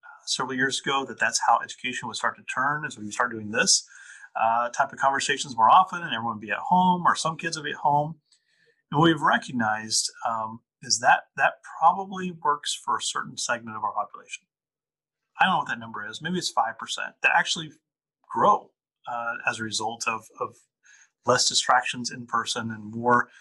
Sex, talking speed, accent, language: male, 200 wpm, American, English